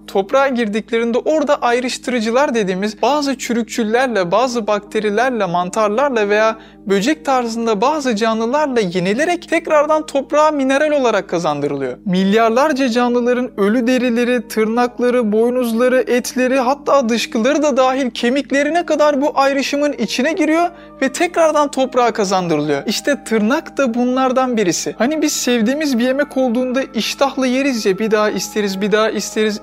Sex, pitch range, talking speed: male, 220-280 Hz, 125 wpm